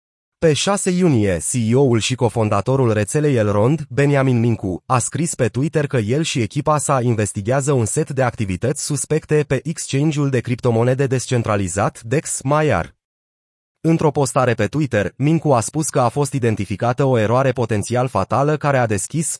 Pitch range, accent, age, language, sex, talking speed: 115-150 Hz, native, 30-49, Romanian, male, 150 wpm